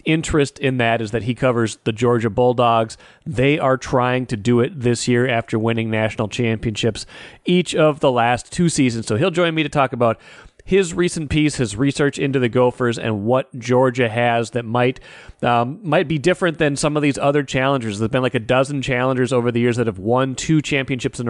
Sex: male